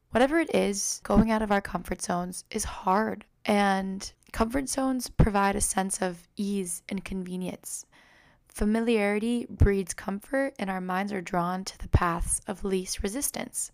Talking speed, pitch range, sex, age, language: 155 wpm, 190-245 Hz, female, 10-29, English